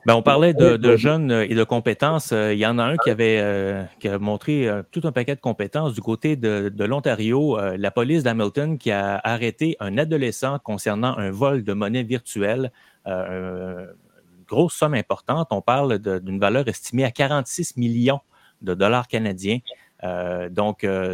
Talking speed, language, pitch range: 185 wpm, French, 100-125 Hz